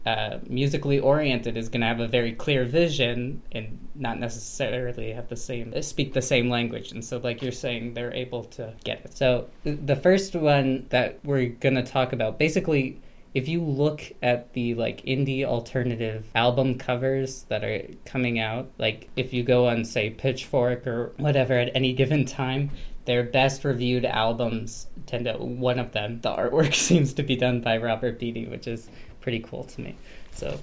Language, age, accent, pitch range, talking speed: English, 20-39, American, 115-135 Hz, 180 wpm